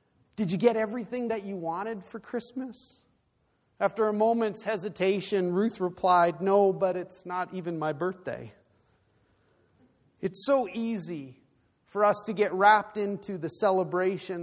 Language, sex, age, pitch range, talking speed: English, male, 40-59, 170-210 Hz, 135 wpm